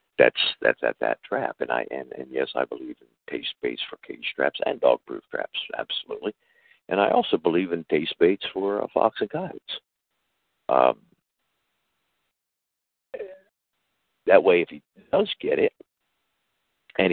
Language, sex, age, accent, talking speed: English, male, 60-79, American, 155 wpm